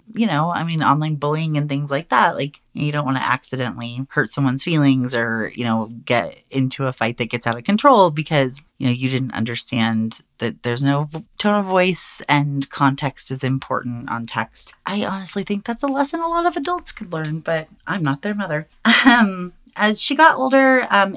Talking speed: 205 wpm